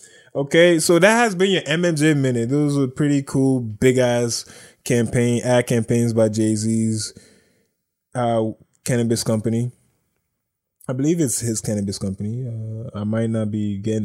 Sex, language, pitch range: male, English, 115-165 Hz